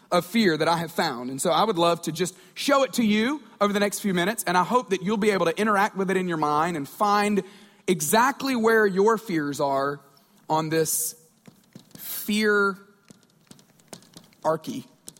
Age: 40-59